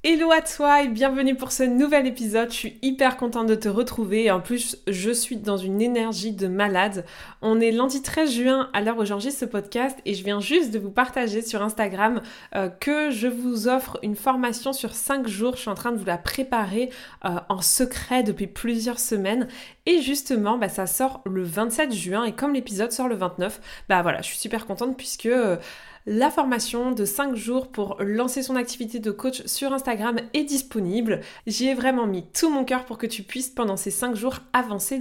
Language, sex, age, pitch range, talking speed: French, female, 20-39, 210-265 Hz, 210 wpm